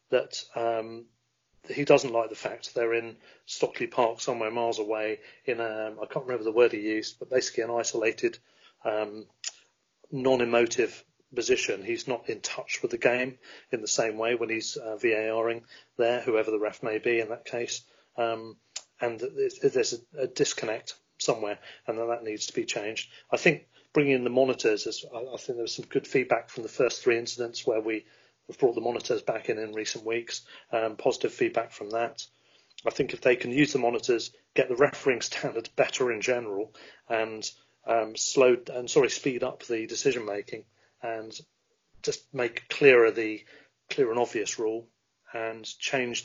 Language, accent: English, British